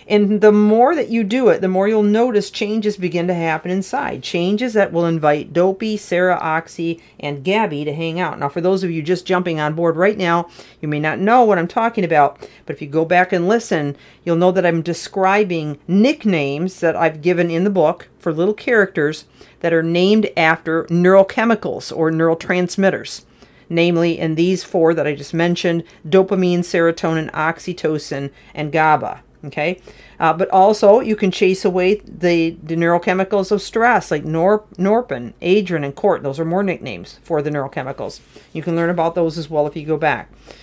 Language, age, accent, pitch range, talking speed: English, 40-59, American, 165-210 Hz, 185 wpm